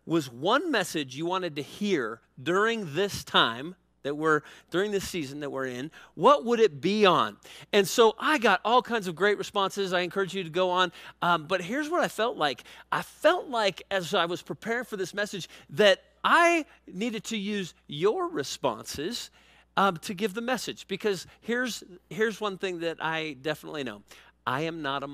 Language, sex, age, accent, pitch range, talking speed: English, male, 40-59, American, 140-200 Hz, 190 wpm